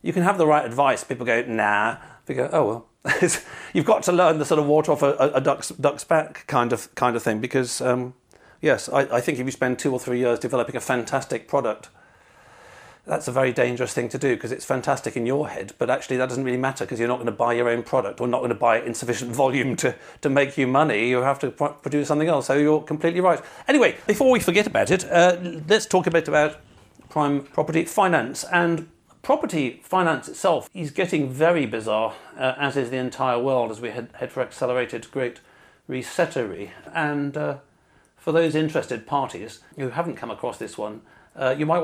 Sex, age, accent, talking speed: male, 40-59, British, 220 wpm